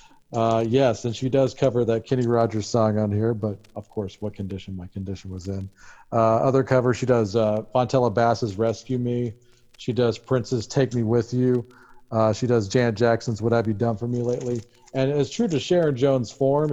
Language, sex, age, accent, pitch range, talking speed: English, male, 40-59, American, 110-135 Hz, 205 wpm